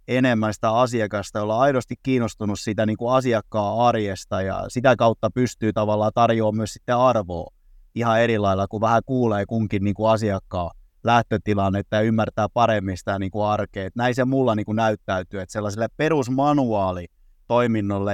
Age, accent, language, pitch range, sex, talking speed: 20-39, native, Finnish, 105-130 Hz, male, 155 wpm